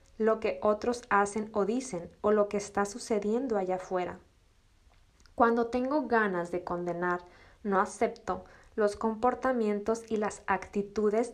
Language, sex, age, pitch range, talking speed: Spanish, female, 20-39, 190-225 Hz, 130 wpm